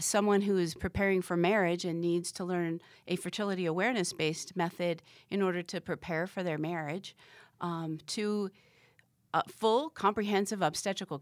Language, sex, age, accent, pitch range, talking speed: English, female, 40-59, American, 160-200 Hz, 145 wpm